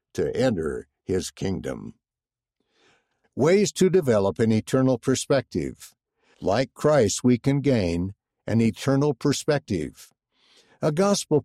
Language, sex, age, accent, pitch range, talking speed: English, male, 60-79, American, 110-145 Hz, 105 wpm